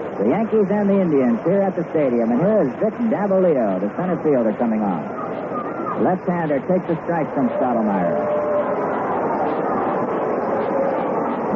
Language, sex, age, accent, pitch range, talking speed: English, male, 50-69, American, 145-200 Hz, 130 wpm